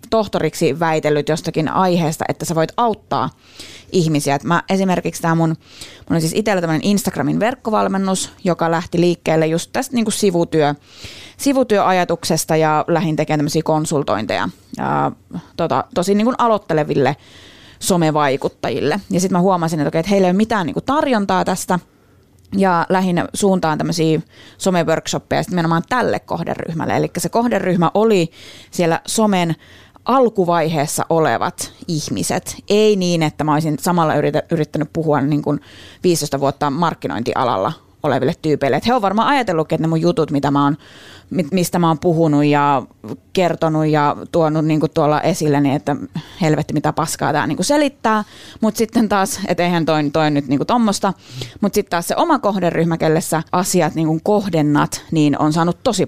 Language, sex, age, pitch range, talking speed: Finnish, female, 20-39, 150-190 Hz, 150 wpm